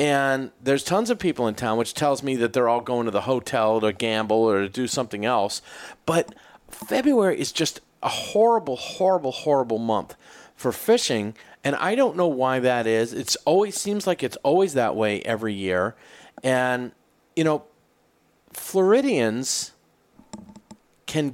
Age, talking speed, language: 40-59, 160 wpm, English